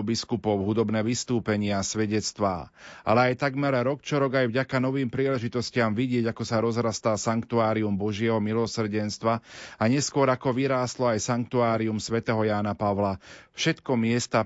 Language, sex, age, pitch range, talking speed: Slovak, male, 40-59, 105-125 Hz, 135 wpm